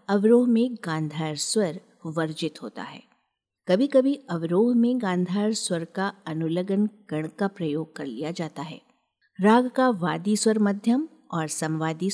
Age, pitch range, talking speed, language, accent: 50-69, 165-230 Hz, 145 wpm, Hindi, native